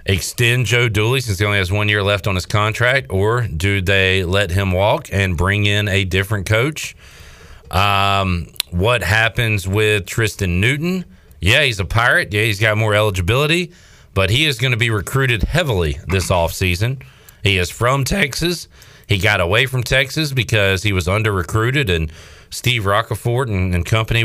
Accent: American